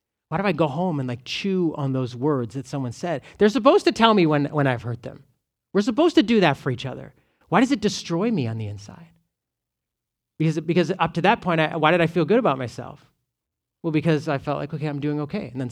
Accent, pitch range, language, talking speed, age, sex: American, 135-180 Hz, English, 250 wpm, 30-49, male